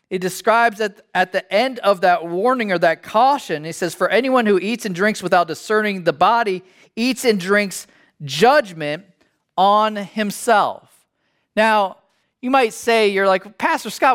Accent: American